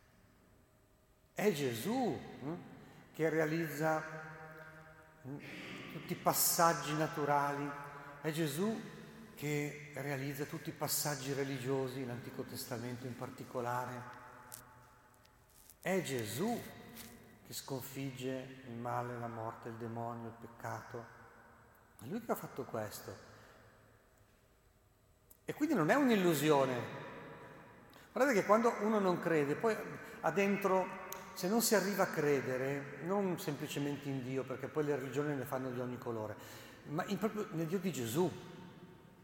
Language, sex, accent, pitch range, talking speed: Italian, male, native, 125-180 Hz, 120 wpm